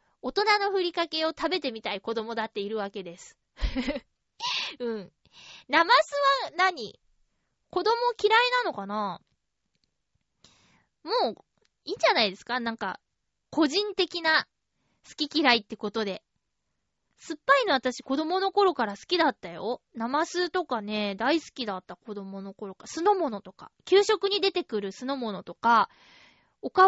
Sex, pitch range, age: female, 225-370 Hz, 20-39